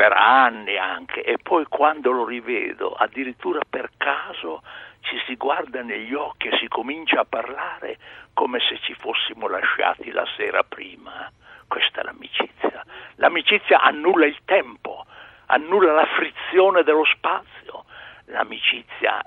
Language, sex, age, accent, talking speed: Italian, male, 60-79, native, 130 wpm